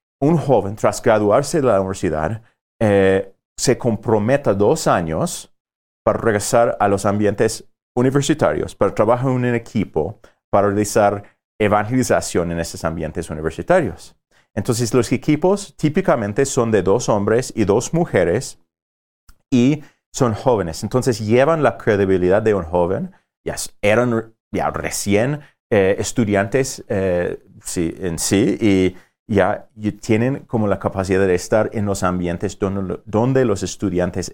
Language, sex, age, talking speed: English, male, 30-49, 135 wpm